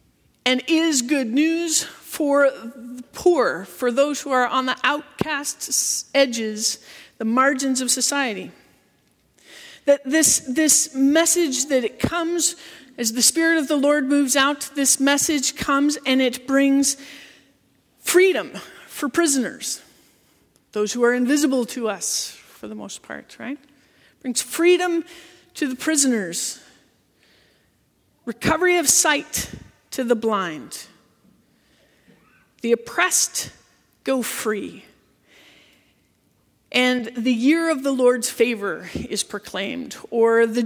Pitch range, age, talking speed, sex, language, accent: 230-295 Hz, 40-59, 120 wpm, female, English, American